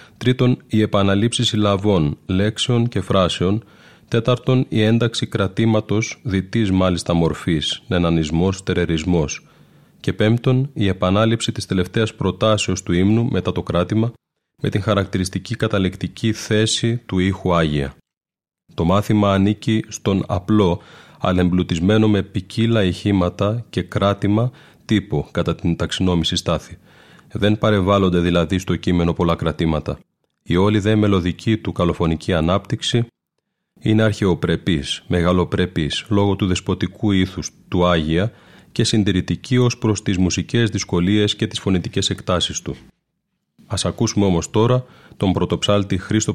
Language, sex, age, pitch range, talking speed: Greek, male, 30-49, 90-110 Hz, 120 wpm